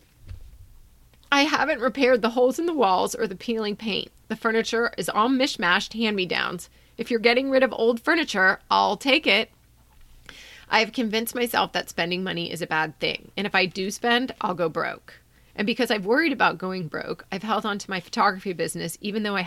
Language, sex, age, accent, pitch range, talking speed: English, female, 30-49, American, 165-210 Hz, 195 wpm